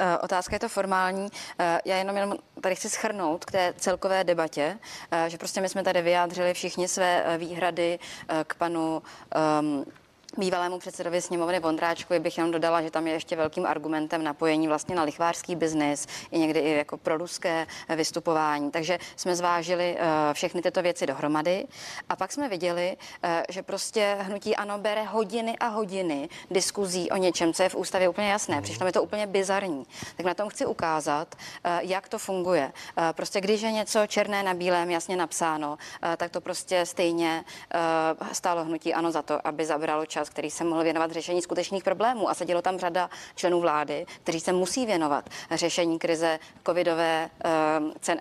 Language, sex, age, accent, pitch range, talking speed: Czech, female, 30-49, native, 165-190 Hz, 165 wpm